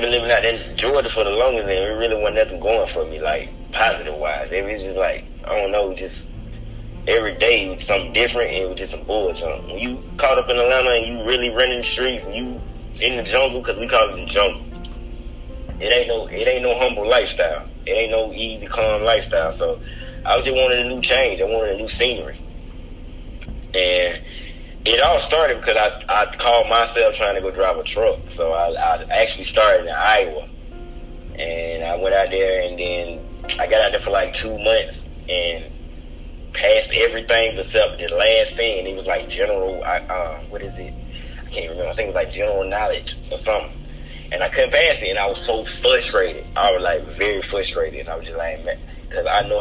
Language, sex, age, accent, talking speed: English, male, 30-49, American, 210 wpm